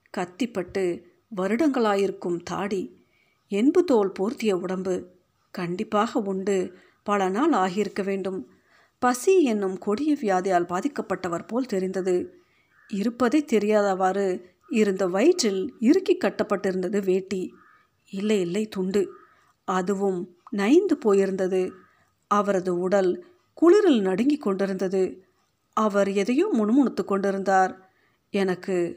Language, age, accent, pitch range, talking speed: Tamil, 50-69, native, 185-235 Hz, 90 wpm